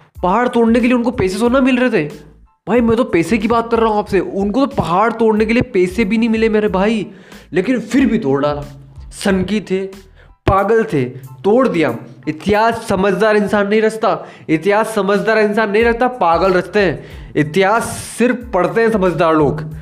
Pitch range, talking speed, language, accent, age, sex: 160-215 Hz, 190 wpm, Hindi, native, 20-39, male